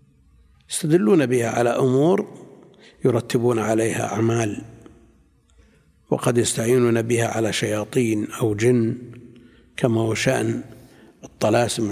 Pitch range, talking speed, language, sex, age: 115-150 Hz, 90 wpm, Arabic, male, 60-79